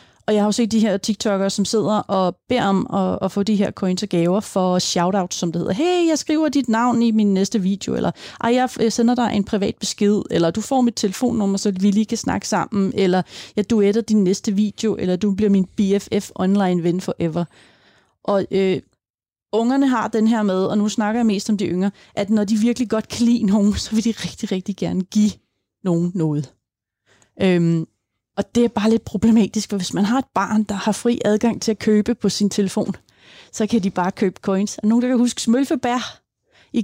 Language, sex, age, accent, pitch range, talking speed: Danish, female, 30-49, native, 195-225 Hz, 220 wpm